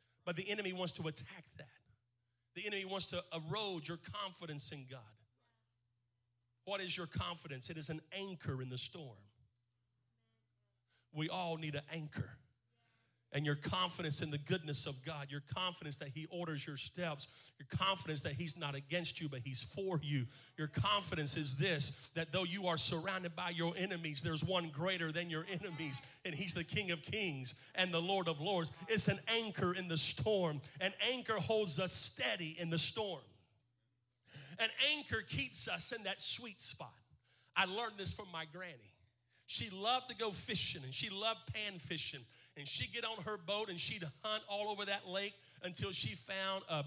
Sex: male